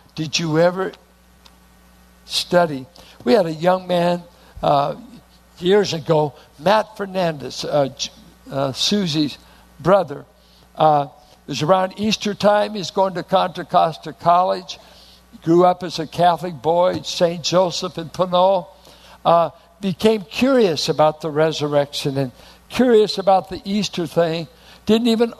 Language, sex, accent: English, male, American